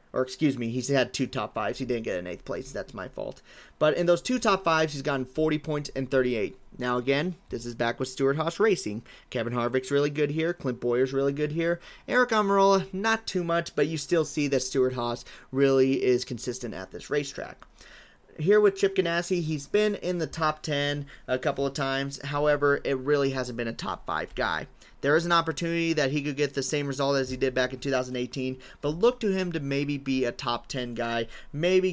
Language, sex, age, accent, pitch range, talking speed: English, male, 30-49, American, 130-165 Hz, 220 wpm